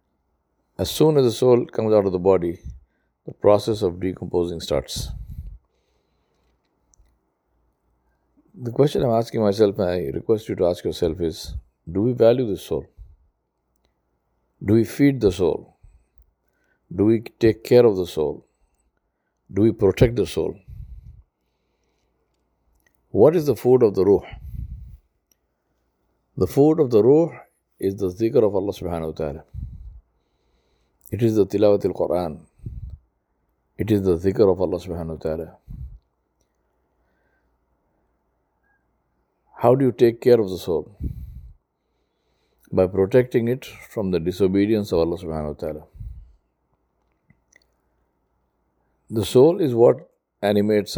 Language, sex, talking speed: English, male, 125 wpm